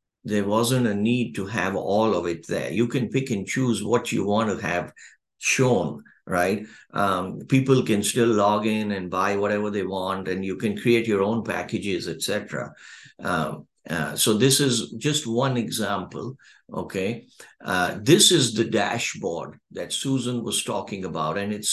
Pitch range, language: 105-120 Hz, English